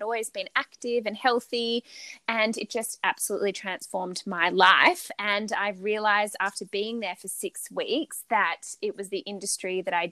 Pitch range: 190-230 Hz